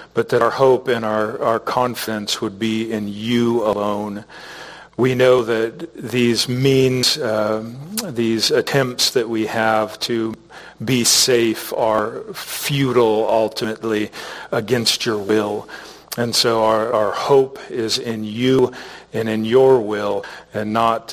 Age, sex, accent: 40-59, male, American